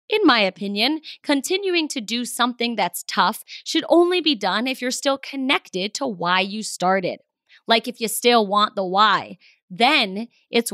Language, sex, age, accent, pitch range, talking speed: English, female, 20-39, American, 205-290 Hz, 170 wpm